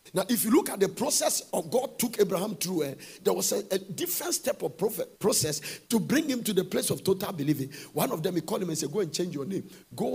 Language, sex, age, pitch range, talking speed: English, male, 50-69, 160-225 Hz, 260 wpm